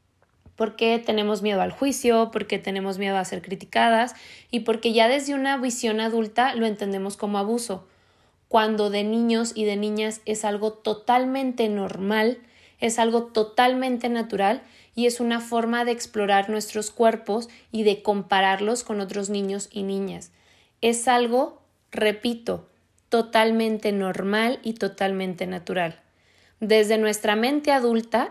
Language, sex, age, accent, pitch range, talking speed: Spanish, female, 20-39, Mexican, 200-230 Hz, 135 wpm